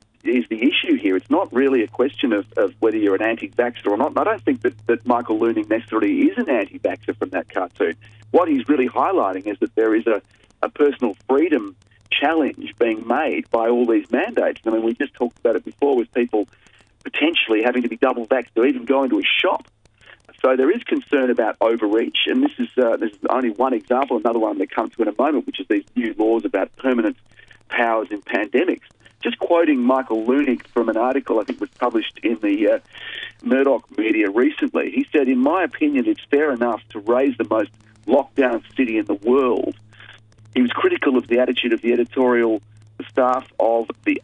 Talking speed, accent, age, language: 210 wpm, Australian, 40-59, English